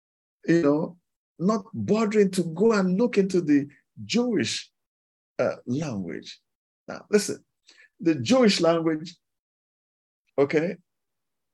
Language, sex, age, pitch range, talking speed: English, male, 50-69, 140-195 Hz, 100 wpm